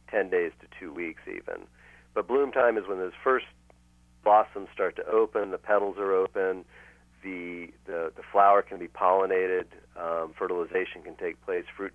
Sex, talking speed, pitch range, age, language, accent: male, 170 wpm, 85-130 Hz, 40-59, English, American